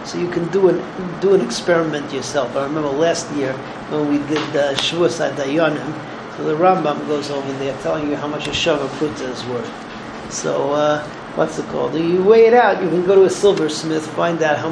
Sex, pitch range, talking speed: male, 150-195 Hz, 210 wpm